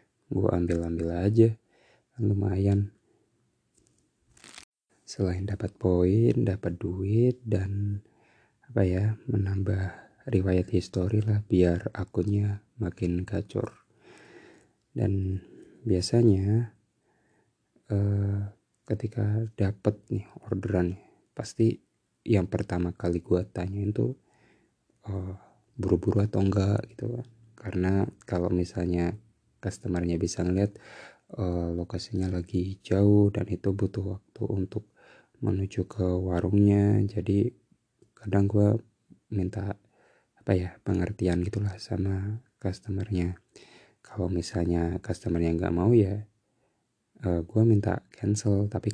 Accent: native